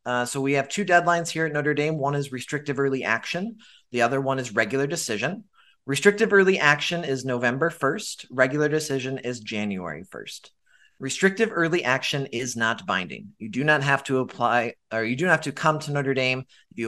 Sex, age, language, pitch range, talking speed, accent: male, 30-49, English, 115-155 Hz, 195 wpm, American